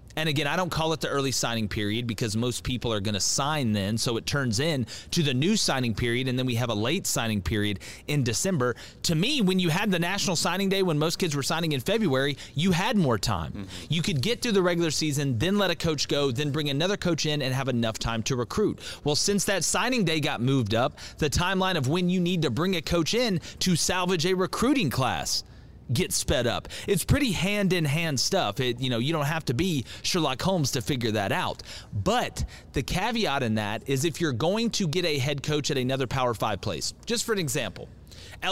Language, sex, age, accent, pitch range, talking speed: English, male, 30-49, American, 120-180 Hz, 230 wpm